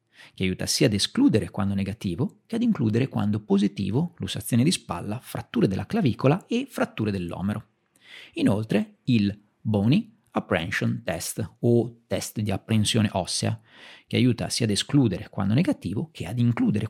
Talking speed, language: 145 wpm, Italian